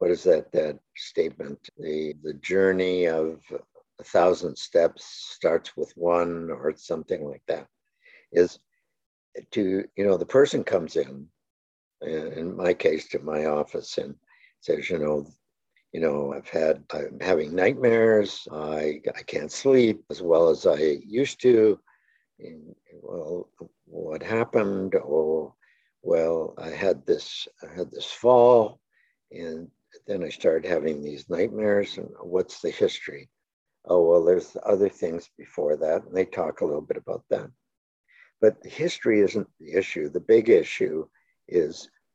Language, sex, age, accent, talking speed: English, male, 60-79, American, 150 wpm